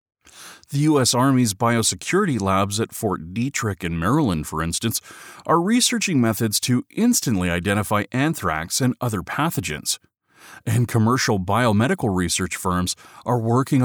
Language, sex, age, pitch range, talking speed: English, male, 30-49, 100-150 Hz, 125 wpm